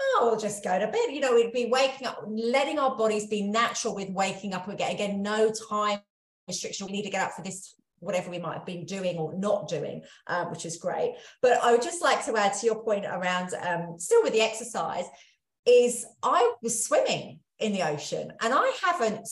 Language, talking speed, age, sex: English, 220 wpm, 40-59, female